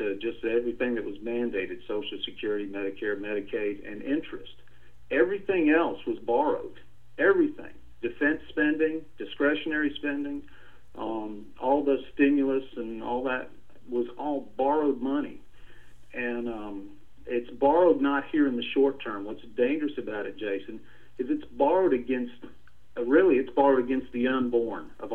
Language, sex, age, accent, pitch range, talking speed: English, male, 50-69, American, 110-155 Hz, 140 wpm